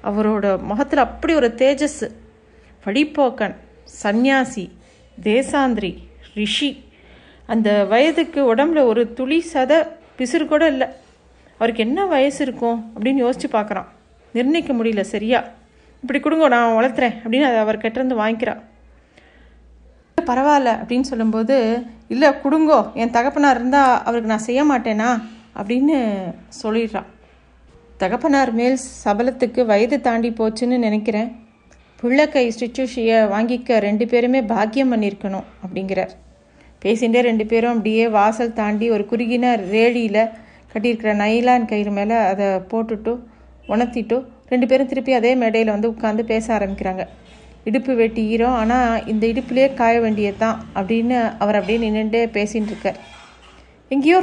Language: Tamil